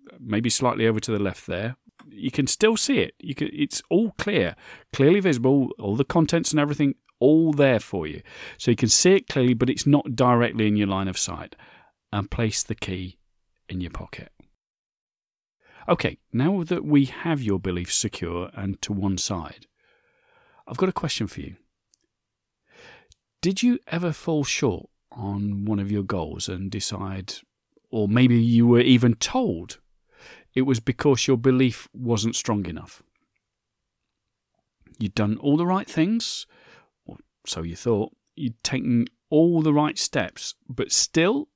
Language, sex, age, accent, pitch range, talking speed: English, male, 40-59, British, 105-165 Hz, 160 wpm